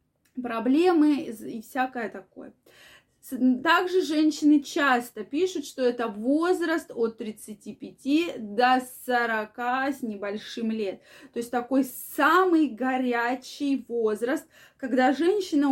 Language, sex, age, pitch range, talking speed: Russian, female, 20-39, 235-310 Hz, 100 wpm